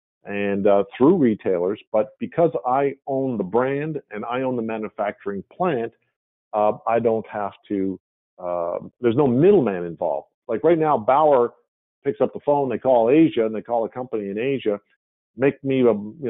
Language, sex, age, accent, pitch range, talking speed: English, male, 50-69, American, 100-130 Hz, 175 wpm